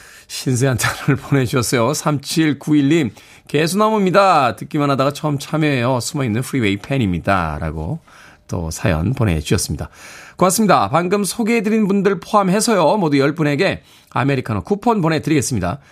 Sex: male